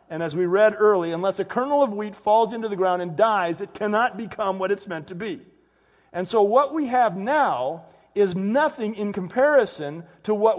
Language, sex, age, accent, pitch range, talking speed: English, male, 50-69, American, 185-250 Hz, 205 wpm